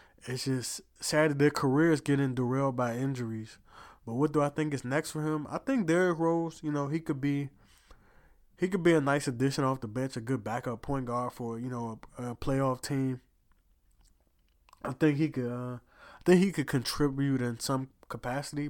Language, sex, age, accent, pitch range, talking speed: English, male, 20-39, American, 125-150 Hz, 200 wpm